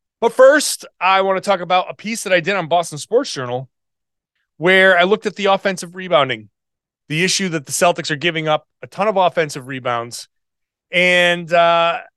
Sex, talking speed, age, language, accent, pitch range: male, 185 wpm, 30-49, English, American, 145-200 Hz